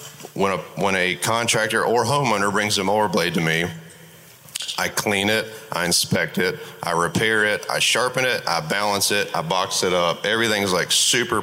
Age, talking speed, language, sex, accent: 30-49, 185 wpm, English, male, American